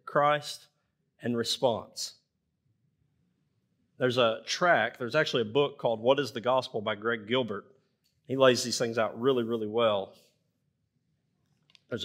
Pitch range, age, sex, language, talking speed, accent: 115-155 Hz, 30-49, male, English, 135 wpm, American